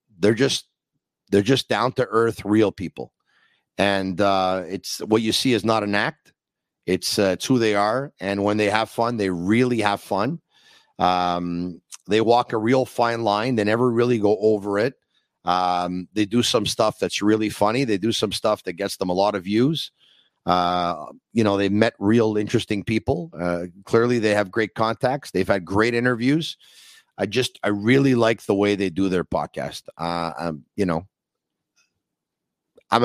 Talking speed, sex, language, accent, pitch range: 180 wpm, male, English, American, 95-115 Hz